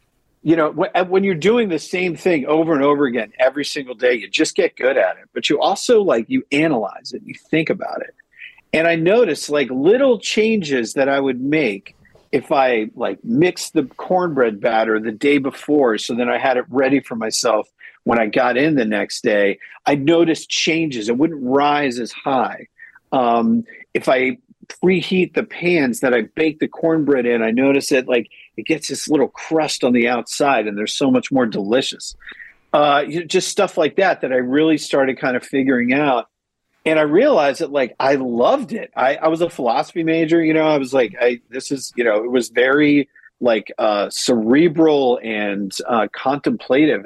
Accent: American